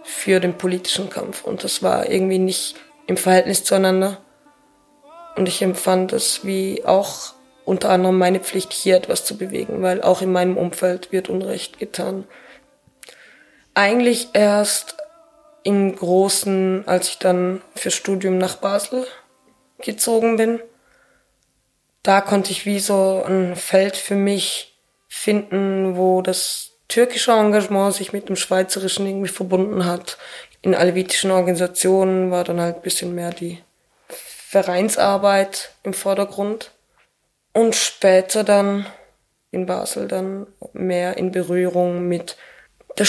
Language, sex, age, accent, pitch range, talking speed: German, female, 20-39, German, 185-210 Hz, 130 wpm